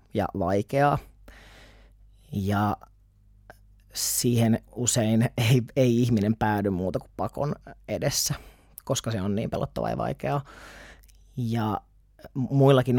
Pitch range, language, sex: 105-120 Hz, Finnish, male